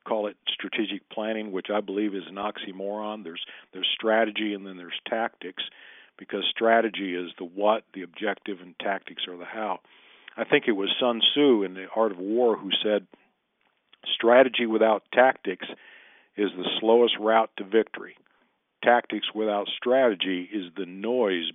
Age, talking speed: 50-69, 160 wpm